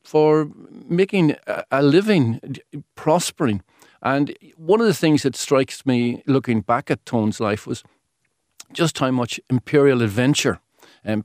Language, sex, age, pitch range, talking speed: English, male, 50-69, 115-150 Hz, 135 wpm